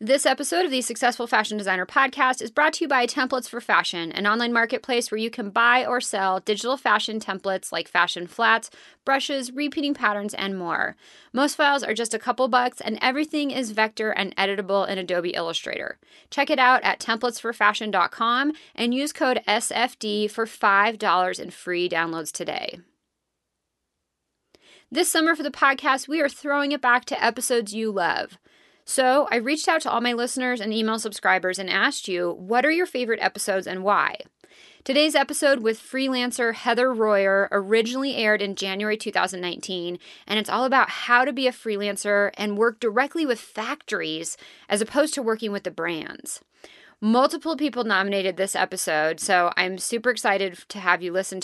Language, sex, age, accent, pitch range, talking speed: English, female, 30-49, American, 195-260 Hz, 170 wpm